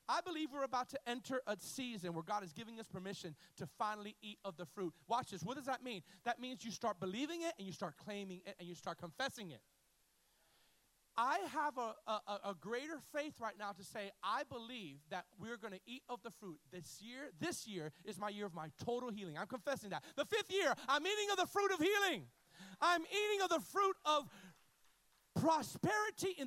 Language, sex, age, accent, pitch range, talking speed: English, male, 40-59, American, 200-305 Hz, 215 wpm